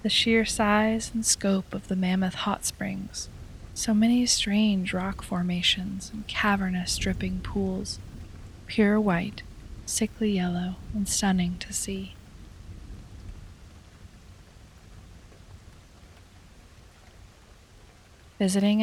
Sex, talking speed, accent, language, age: female, 90 wpm, American, English, 20-39